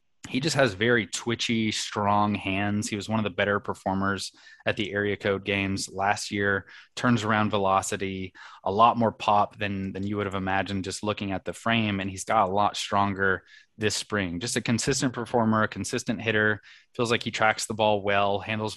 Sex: male